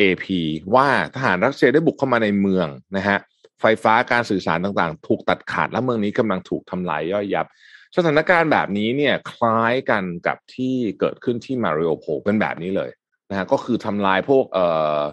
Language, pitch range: Thai, 90-120 Hz